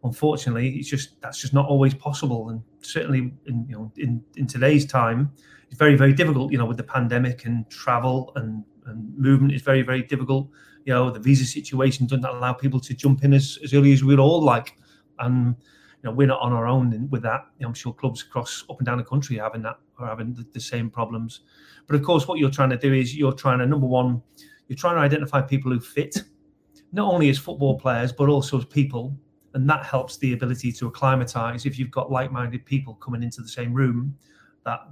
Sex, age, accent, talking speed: male, 30-49, British, 225 wpm